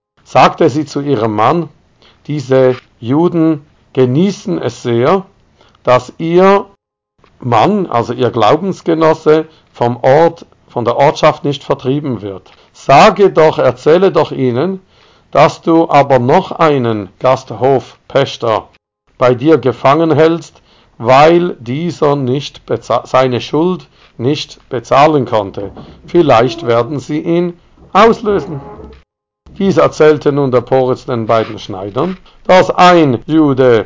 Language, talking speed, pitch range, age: German, 115 wpm, 125-165 Hz, 50-69